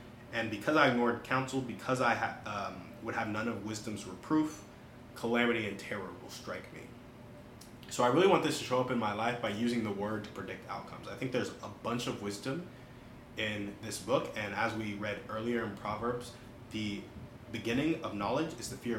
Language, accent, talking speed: English, American, 195 wpm